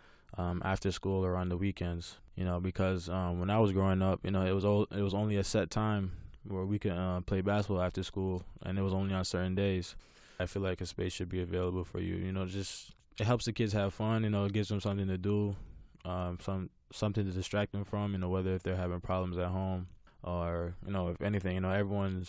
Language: English